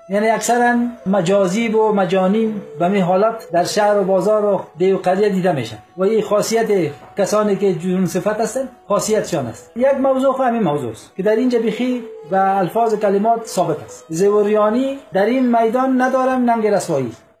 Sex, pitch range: male, 190-235 Hz